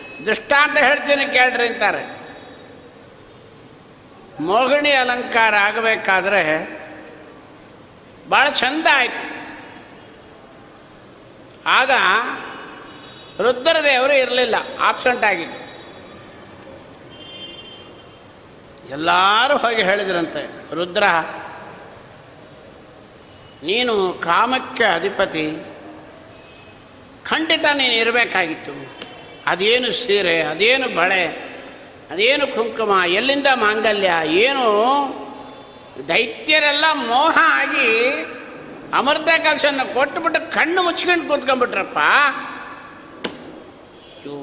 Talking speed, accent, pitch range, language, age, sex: 60 wpm, native, 220-305 Hz, Kannada, 60-79, male